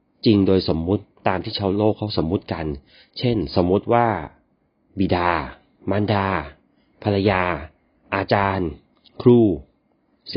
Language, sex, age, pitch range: Thai, male, 30-49, 90-115 Hz